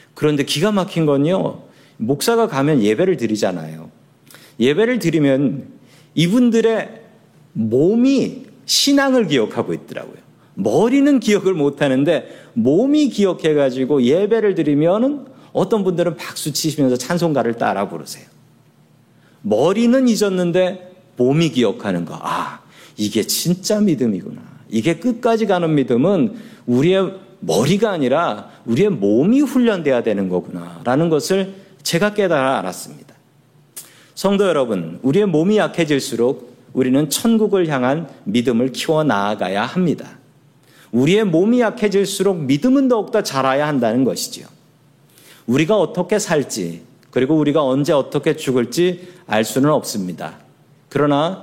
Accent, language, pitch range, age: native, Korean, 135-200 Hz, 40-59